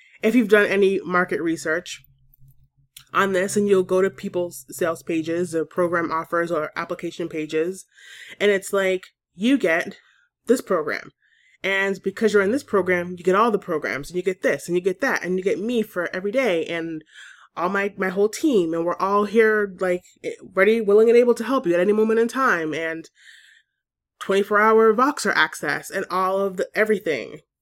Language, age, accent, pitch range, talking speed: English, 20-39, American, 180-225 Hz, 190 wpm